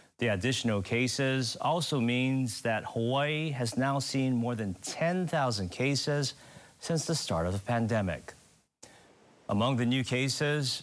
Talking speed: 135 wpm